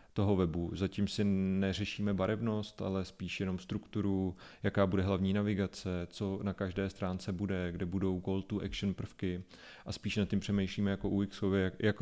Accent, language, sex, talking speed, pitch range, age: native, Czech, male, 155 wpm, 90-100 Hz, 30-49